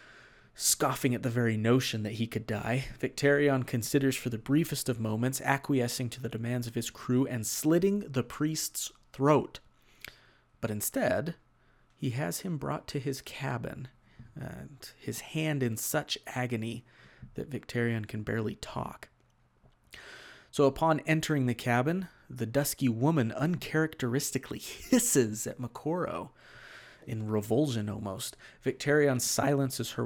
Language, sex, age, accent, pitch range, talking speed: English, male, 30-49, American, 115-140 Hz, 135 wpm